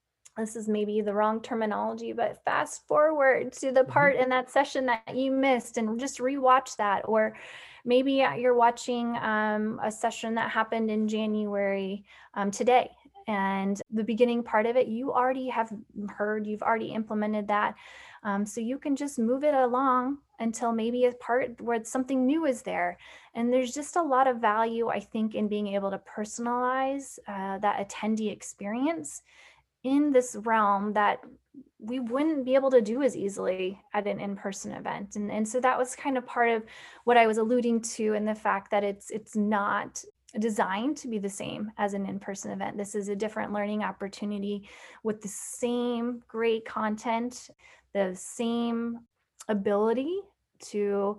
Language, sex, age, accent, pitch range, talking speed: English, female, 10-29, American, 210-255 Hz, 170 wpm